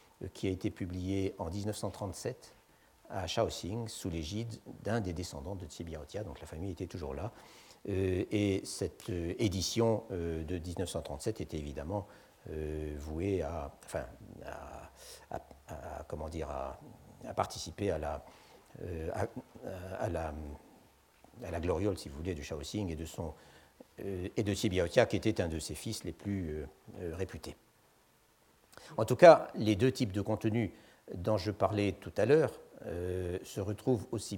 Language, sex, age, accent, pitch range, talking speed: French, male, 60-79, French, 90-110 Hz, 160 wpm